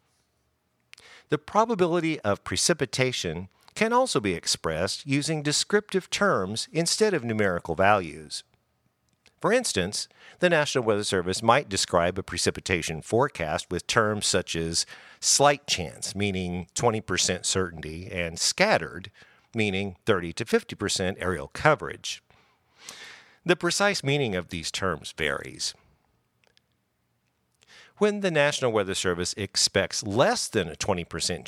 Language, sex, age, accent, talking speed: English, male, 50-69, American, 115 wpm